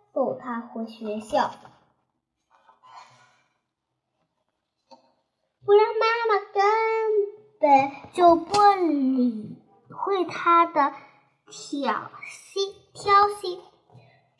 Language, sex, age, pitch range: Chinese, male, 10-29, 280-410 Hz